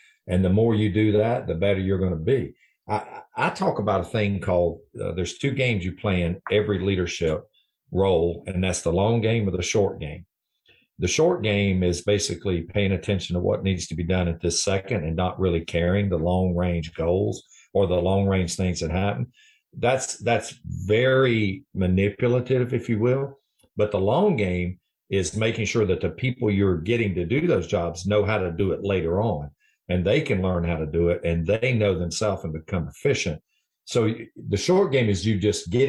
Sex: male